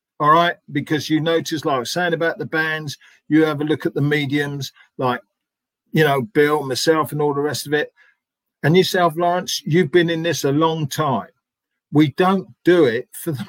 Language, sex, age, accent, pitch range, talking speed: English, male, 50-69, British, 130-170 Hz, 205 wpm